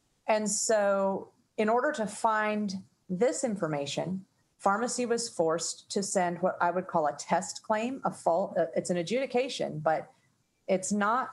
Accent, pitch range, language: American, 170-210 Hz, English